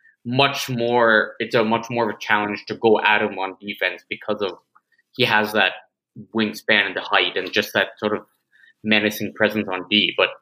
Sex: male